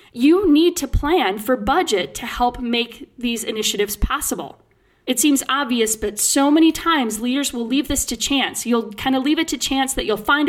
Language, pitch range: English, 215-285 Hz